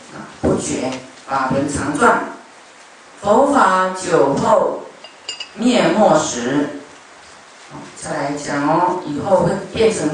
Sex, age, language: female, 40-59, Chinese